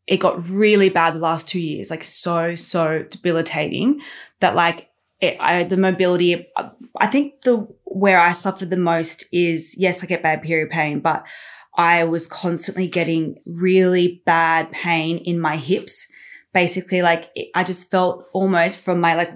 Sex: female